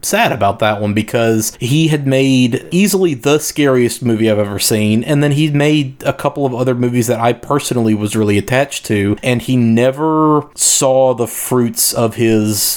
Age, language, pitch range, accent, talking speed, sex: 30-49, English, 110-130 Hz, American, 185 wpm, male